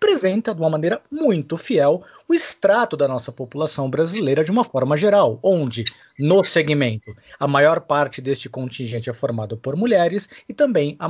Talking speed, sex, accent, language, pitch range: 170 wpm, male, Brazilian, Portuguese, 135-190 Hz